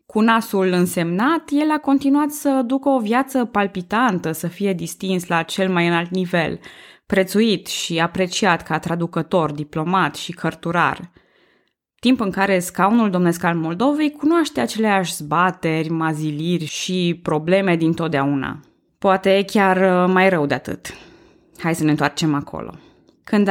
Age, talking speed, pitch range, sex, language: 20-39, 135 wpm, 170-215 Hz, female, Romanian